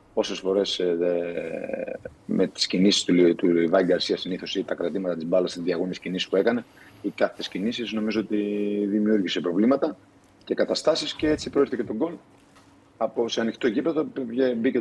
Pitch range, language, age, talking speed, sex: 95-115 Hz, Greek, 30-49, 170 wpm, male